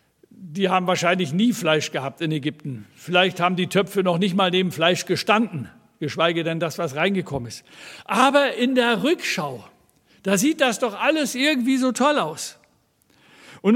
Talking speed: 165 wpm